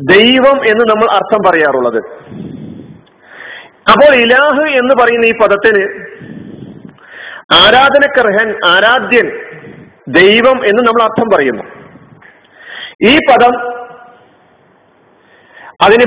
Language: Malayalam